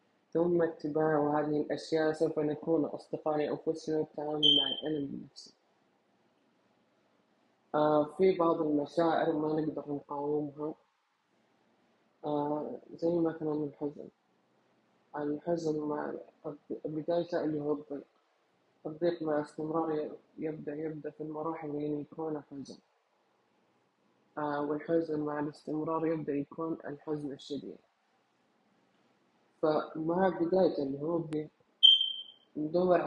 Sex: female